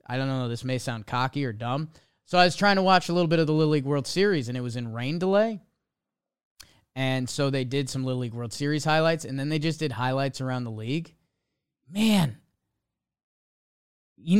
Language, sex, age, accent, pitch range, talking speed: English, male, 20-39, American, 125-165 Hz, 215 wpm